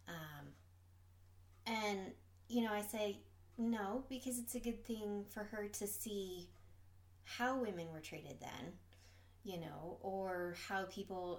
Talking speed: 135 wpm